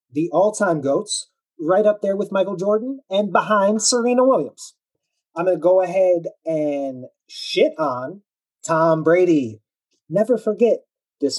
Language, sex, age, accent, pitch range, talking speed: English, male, 30-49, American, 150-195 Hz, 135 wpm